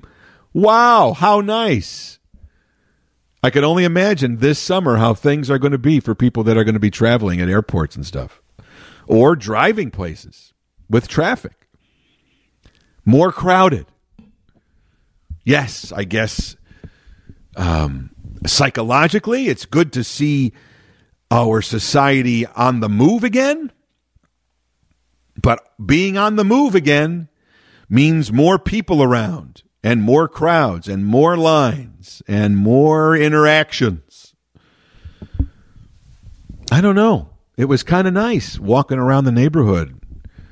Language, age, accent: English, 50-69, American